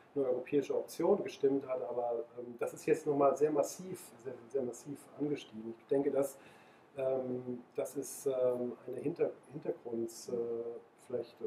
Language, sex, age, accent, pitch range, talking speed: German, male, 40-59, German, 140-160 Hz, 145 wpm